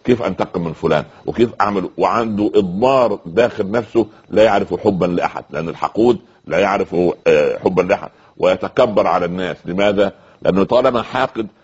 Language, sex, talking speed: Arabic, male, 140 wpm